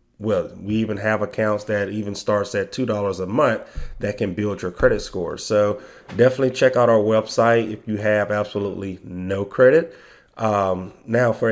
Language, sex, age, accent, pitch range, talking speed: English, male, 30-49, American, 100-115 Hz, 170 wpm